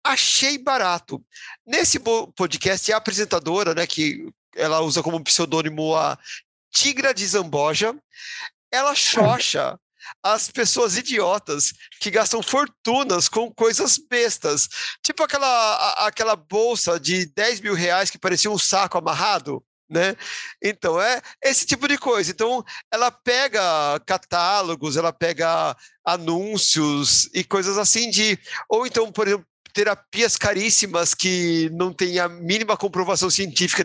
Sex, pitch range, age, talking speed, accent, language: male, 175-240 Hz, 40-59, 125 wpm, Brazilian, Portuguese